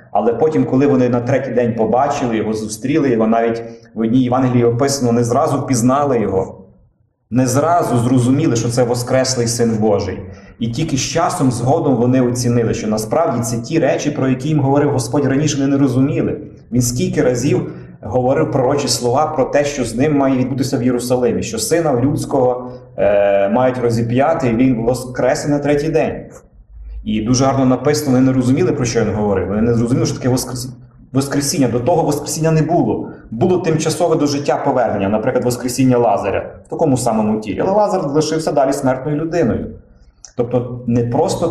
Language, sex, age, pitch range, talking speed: Ukrainian, male, 30-49, 115-140 Hz, 175 wpm